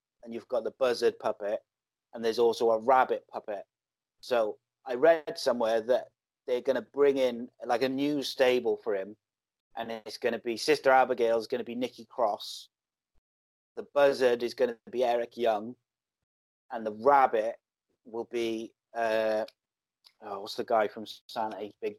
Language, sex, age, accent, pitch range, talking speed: English, male, 30-49, British, 115-165 Hz, 170 wpm